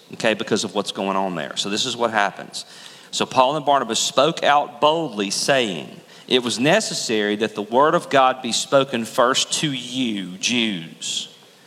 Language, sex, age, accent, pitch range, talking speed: English, male, 40-59, American, 130-175 Hz, 175 wpm